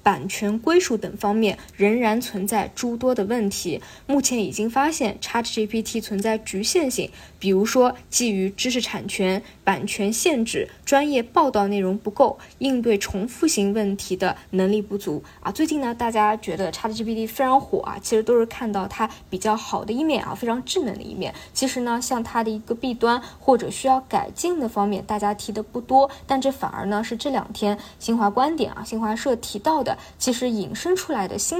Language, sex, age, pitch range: Chinese, female, 20-39, 205-255 Hz